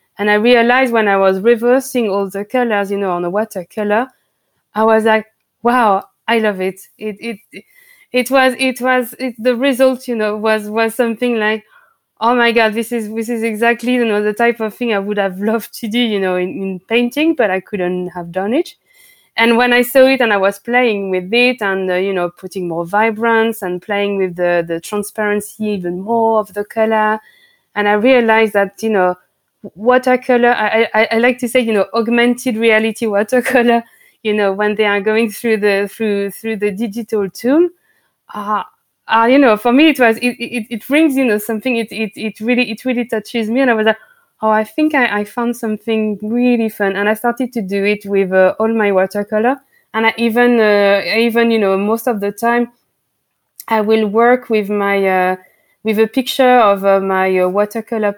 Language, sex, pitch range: English, female, 205-240 Hz